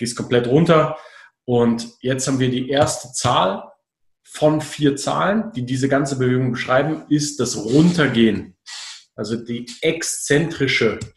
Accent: German